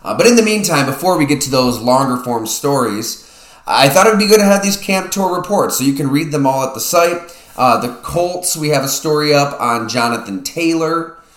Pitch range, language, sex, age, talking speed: 115-150 Hz, English, male, 20-39, 240 wpm